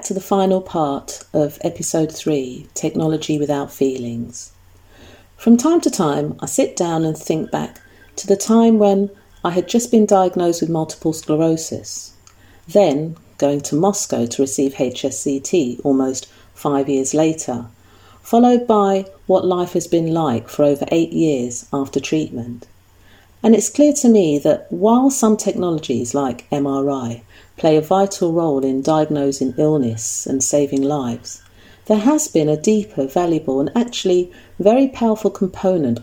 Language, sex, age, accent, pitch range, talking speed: English, female, 40-59, British, 120-190 Hz, 145 wpm